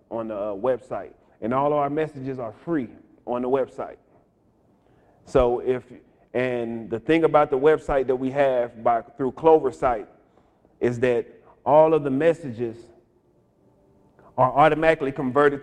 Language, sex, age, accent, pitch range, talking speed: English, male, 30-49, American, 125-155 Hz, 140 wpm